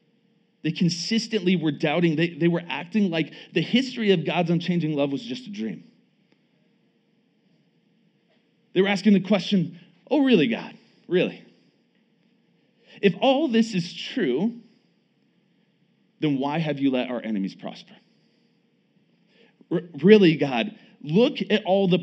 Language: English